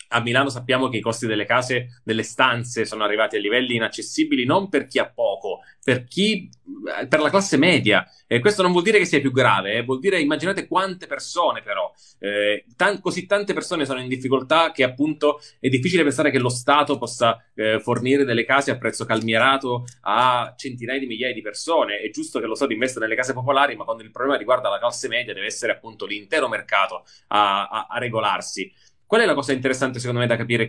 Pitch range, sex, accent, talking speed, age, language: 115-150 Hz, male, native, 210 wpm, 30-49, Italian